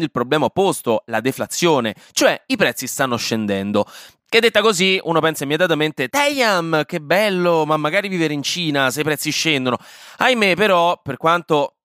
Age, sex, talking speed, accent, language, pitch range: 20-39, male, 160 wpm, native, Italian, 120-175 Hz